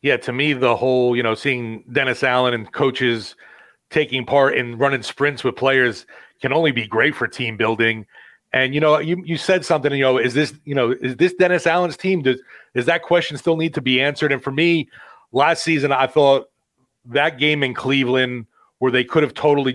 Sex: male